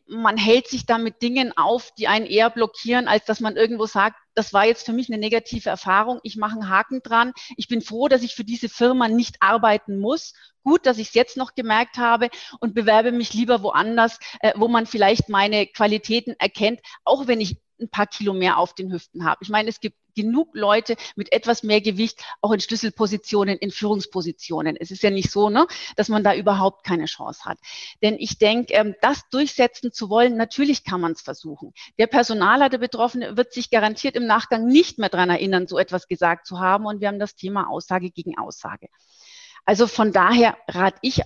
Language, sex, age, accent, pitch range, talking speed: German, female, 40-59, German, 200-240 Hz, 205 wpm